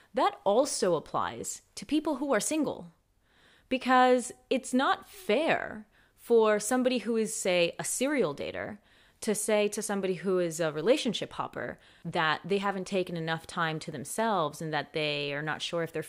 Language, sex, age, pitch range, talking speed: English, female, 30-49, 170-240 Hz, 170 wpm